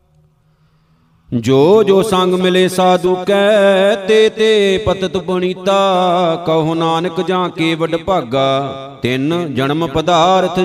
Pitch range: 165-185 Hz